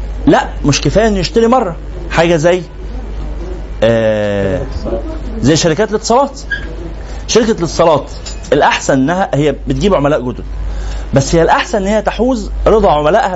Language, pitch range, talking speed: Arabic, 130-220 Hz, 130 wpm